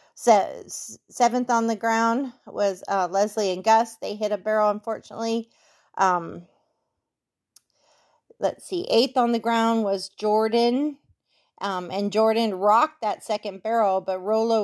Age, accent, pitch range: 40-59, American, 185-225 Hz